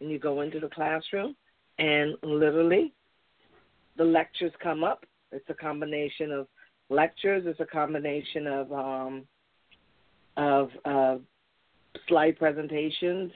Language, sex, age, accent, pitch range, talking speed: English, female, 40-59, American, 150-165 Hz, 115 wpm